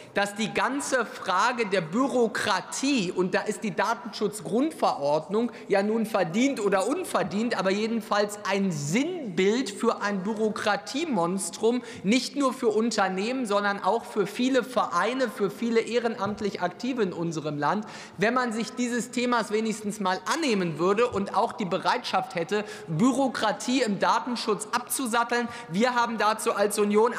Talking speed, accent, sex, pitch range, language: 135 wpm, German, male, 195-235 Hz, German